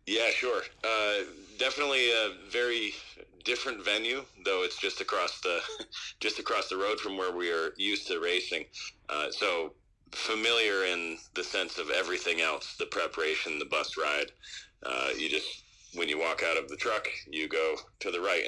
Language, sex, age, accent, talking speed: English, male, 40-59, American, 170 wpm